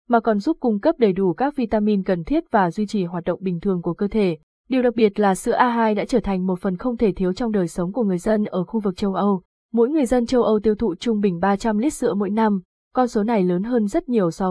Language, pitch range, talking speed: Vietnamese, 195-240 Hz, 280 wpm